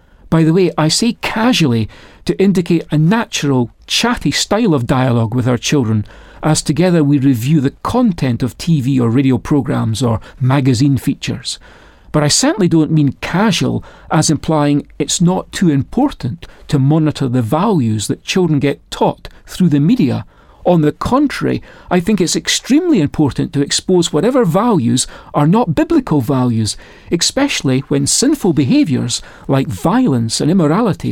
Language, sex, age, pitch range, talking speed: English, male, 40-59, 130-175 Hz, 150 wpm